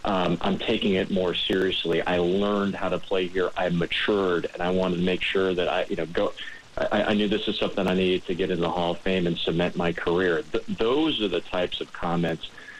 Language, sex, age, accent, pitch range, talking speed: English, male, 40-59, American, 85-100 Hz, 235 wpm